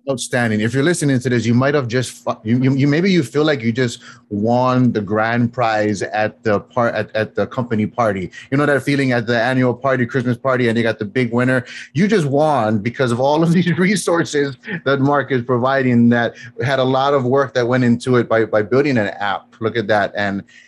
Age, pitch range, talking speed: 30-49, 110-135 Hz, 230 wpm